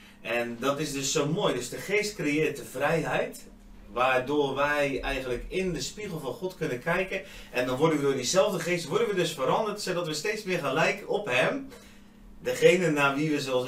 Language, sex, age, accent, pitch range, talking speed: Dutch, male, 30-49, Dutch, 110-155 Hz, 195 wpm